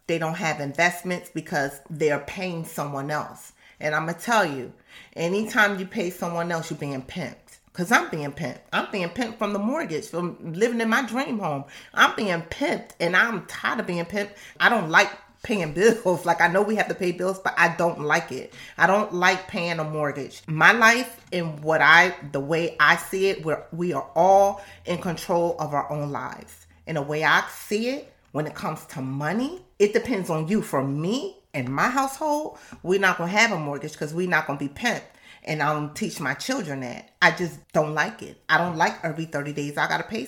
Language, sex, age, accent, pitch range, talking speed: English, female, 30-49, American, 150-200 Hz, 220 wpm